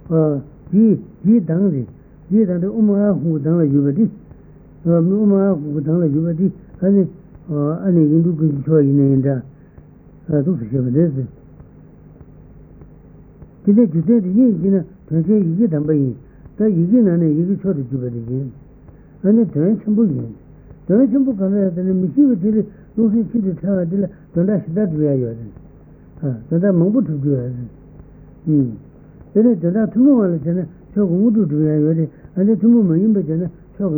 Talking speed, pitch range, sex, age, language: 55 wpm, 150-200 Hz, male, 60-79, Italian